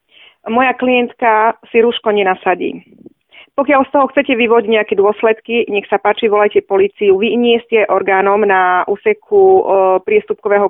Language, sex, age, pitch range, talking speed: Slovak, female, 30-49, 195-230 Hz, 135 wpm